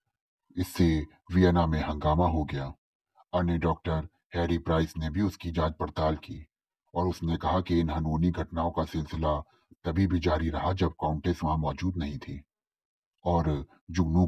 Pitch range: 75-85 Hz